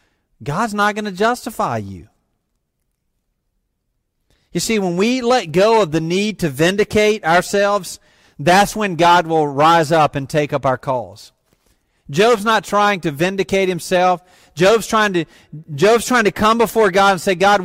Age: 40-59